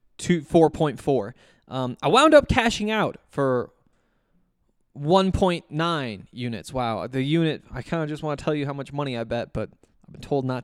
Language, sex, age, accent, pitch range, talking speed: English, male, 20-39, American, 130-170 Hz, 175 wpm